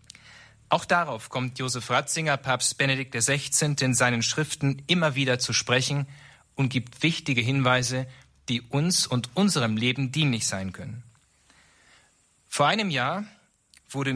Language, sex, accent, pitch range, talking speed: German, male, German, 120-150 Hz, 130 wpm